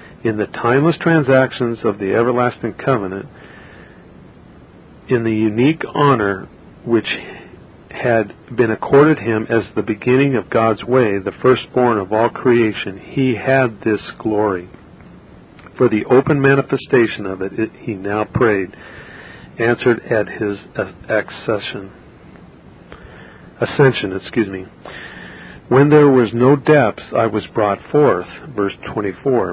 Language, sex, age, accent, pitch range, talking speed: English, male, 50-69, American, 105-130 Hz, 120 wpm